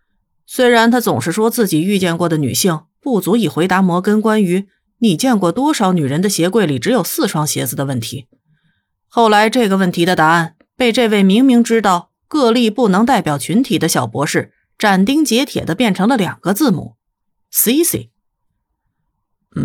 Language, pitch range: Chinese, 165-240 Hz